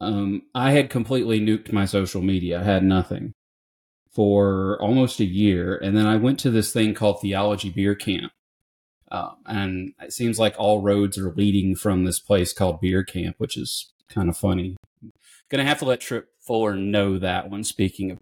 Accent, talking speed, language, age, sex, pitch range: American, 190 wpm, English, 30-49, male, 100-125 Hz